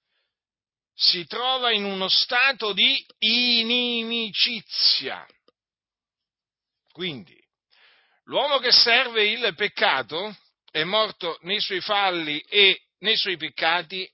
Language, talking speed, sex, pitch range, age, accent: Italian, 95 wpm, male, 175-240 Hz, 50-69, native